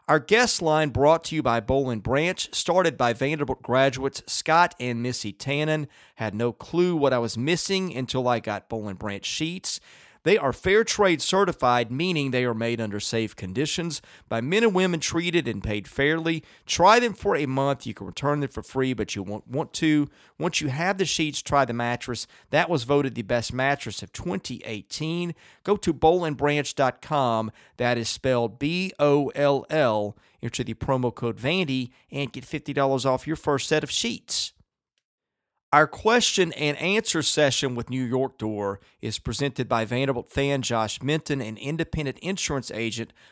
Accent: American